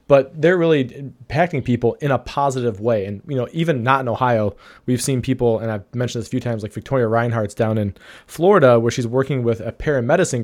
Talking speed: 220 wpm